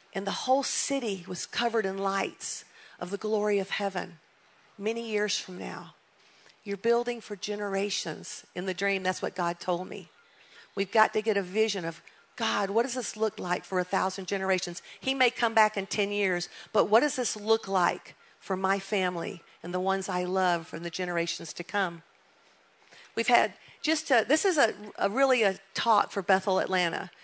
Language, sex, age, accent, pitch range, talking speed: English, female, 50-69, American, 190-225 Hz, 190 wpm